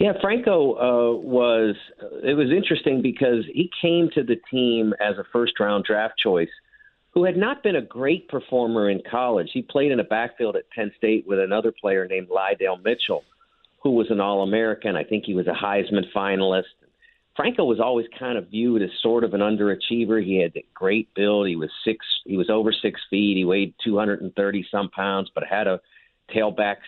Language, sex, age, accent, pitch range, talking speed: English, male, 50-69, American, 100-125 Hz, 190 wpm